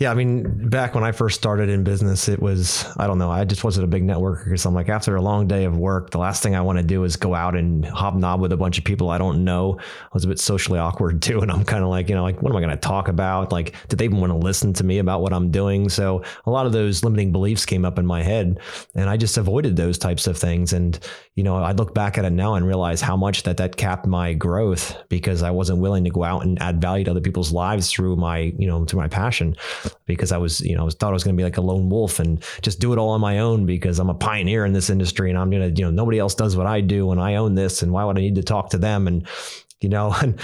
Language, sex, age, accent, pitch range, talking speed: English, male, 30-49, American, 90-110 Hz, 305 wpm